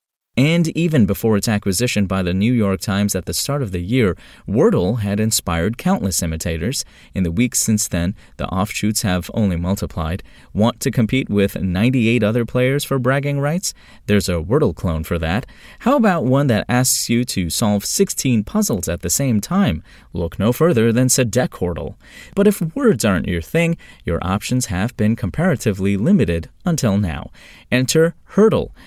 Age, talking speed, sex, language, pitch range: 30-49, 175 wpm, male, English, 90-130 Hz